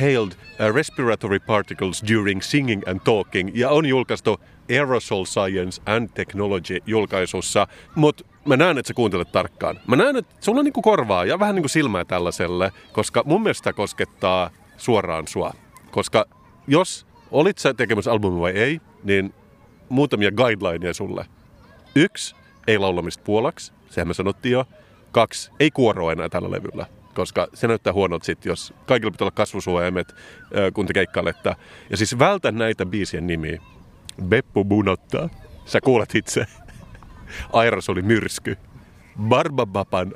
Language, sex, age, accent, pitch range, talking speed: Finnish, male, 30-49, native, 95-120 Hz, 140 wpm